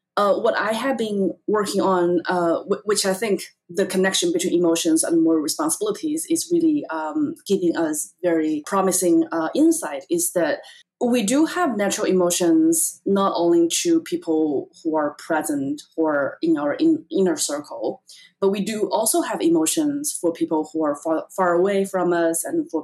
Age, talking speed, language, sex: 20-39, 170 wpm, English, female